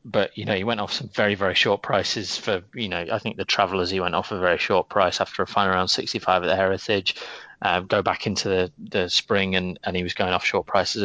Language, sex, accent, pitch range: English, male, British, 95-110 Hz